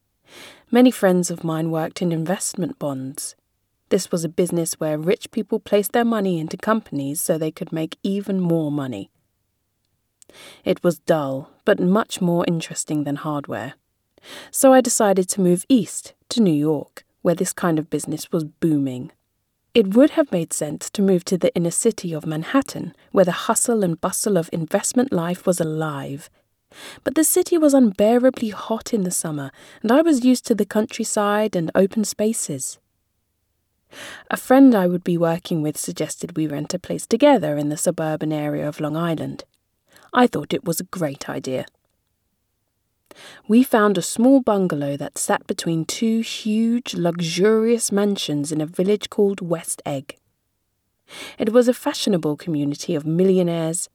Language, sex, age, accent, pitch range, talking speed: English, female, 30-49, British, 150-215 Hz, 160 wpm